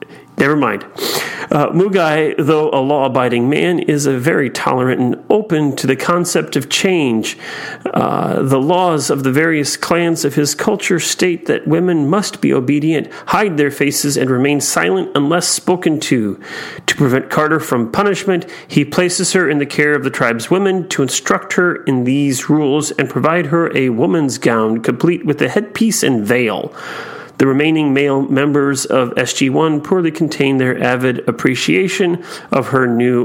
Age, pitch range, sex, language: 40-59, 135-175 Hz, male, English